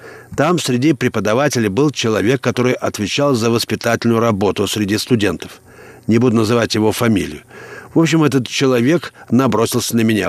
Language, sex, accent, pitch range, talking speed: Russian, male, native, 115-145 Hz, 140 wpm